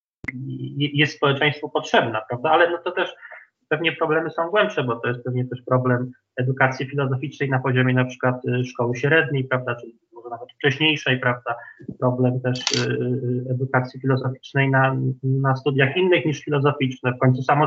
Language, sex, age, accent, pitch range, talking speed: Polish, male, 20-39, native, 130-145 Hz, 155 wpm